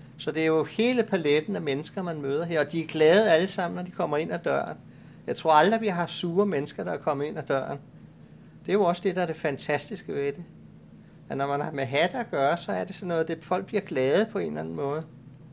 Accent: native